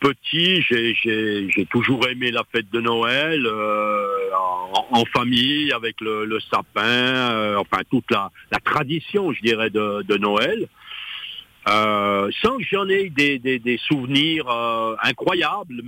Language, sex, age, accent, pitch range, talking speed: French, male, 60-79, French, 120-175 Hz, 150 wpm